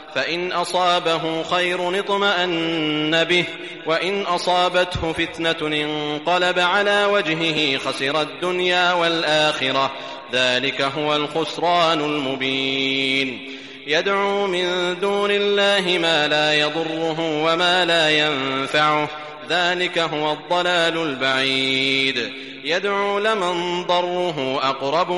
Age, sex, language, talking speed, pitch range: 30-49, male, Arabic, 85 wpm, 150-180 Hz